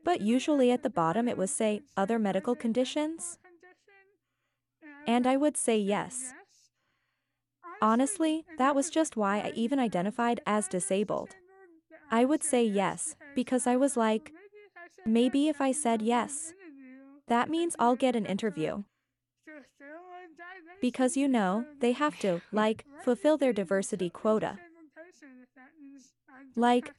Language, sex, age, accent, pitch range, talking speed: English, female, 20-39, American, 215-305 Hz, 125 wpm